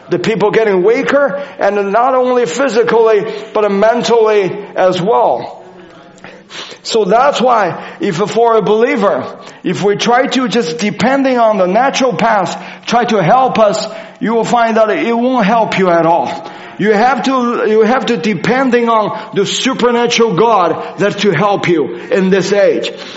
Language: English